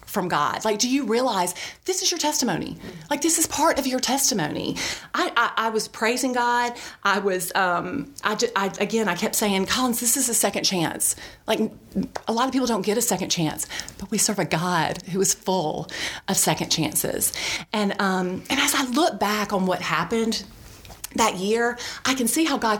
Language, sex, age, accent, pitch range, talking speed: English, female, 30-49, American, 190-260 Hz, 205 wpm